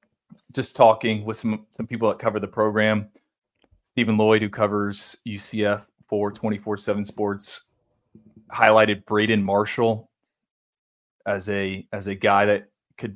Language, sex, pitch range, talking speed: English, male, 105-115 Hz, 130 wpm